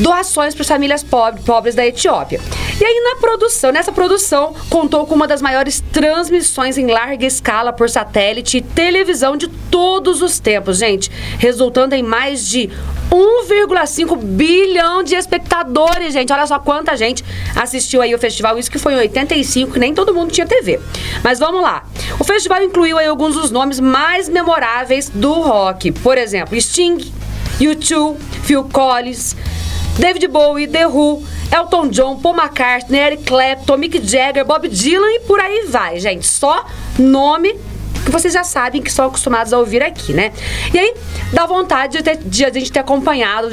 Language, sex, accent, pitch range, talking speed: Portuguese, female, Brazilian, 245-335 Hz, 165 wpm